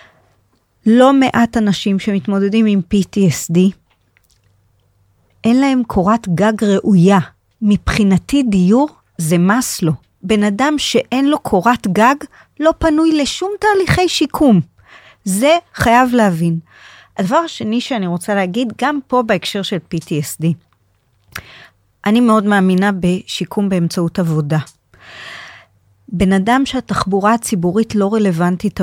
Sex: female